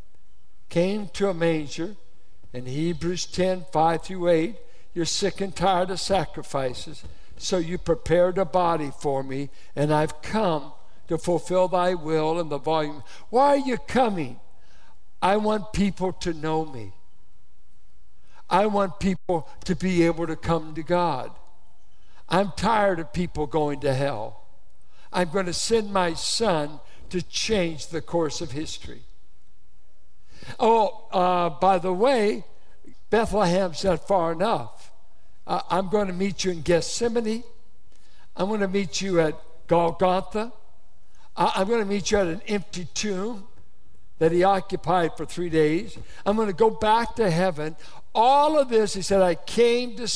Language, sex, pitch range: English, male, 160-200 Hz